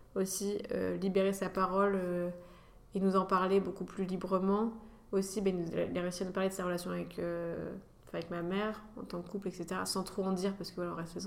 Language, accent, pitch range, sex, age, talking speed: French, French, 175-195 Hz, female, 20-39, 230 wpm